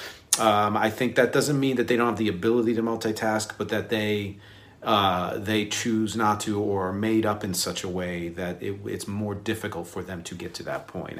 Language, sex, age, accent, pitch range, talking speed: English, male, 40-59, American, 100-125 Hz, 225 wpm